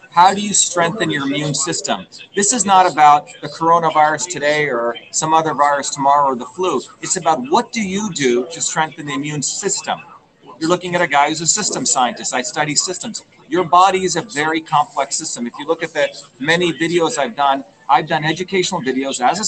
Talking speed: 205 wpm